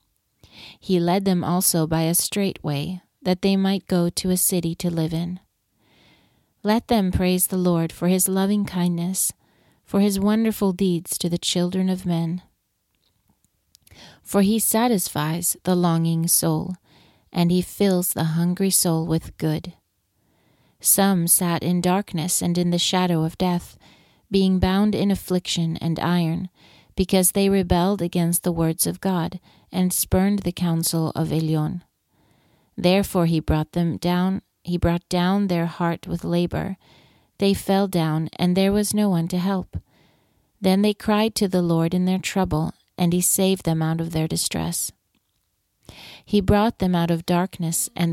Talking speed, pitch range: 155 wpm, 165-190 Hz